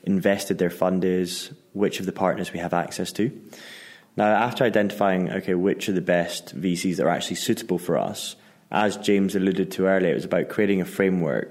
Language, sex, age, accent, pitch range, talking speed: English, male, 20-39, British, 85-95 Hz, 200 wpm